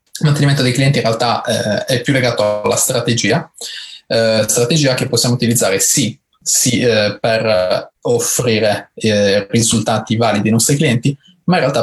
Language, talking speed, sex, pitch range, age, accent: Italian, 155 wpm, male, 110-130 Hz, 20-39, native